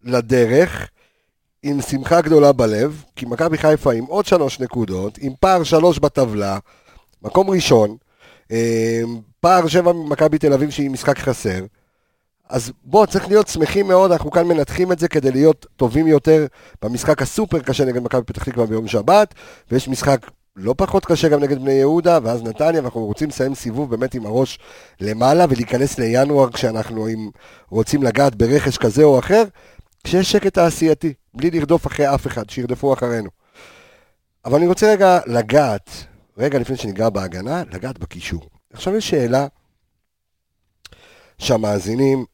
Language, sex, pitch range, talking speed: Hebrew, male, 115-165 Hz, 145 wpm